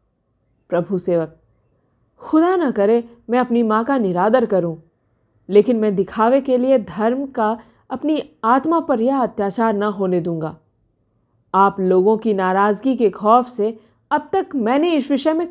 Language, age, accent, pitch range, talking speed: Hindi, 40-59, native, 200-290 Hz, 150 wpm